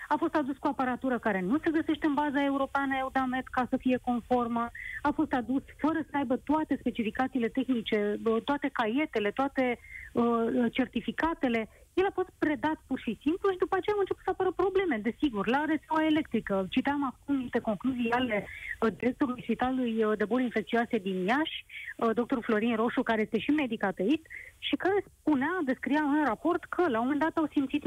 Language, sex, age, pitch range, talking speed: Romanian, female, 30-49, 230-305 Hz, 185 wpm